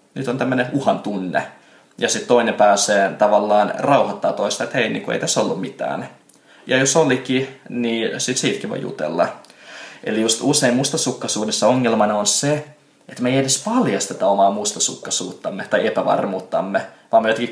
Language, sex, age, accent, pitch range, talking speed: Finnish, male, 20-39, native, 105-135 Hz, 160 wpm